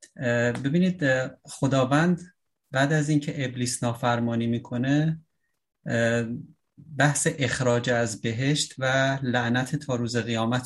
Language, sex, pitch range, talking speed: English, male, 120-145 Hz, 95 wpm